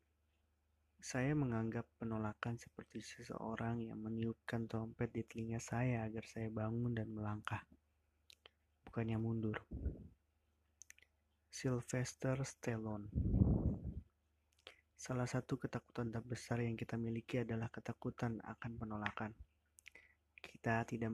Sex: male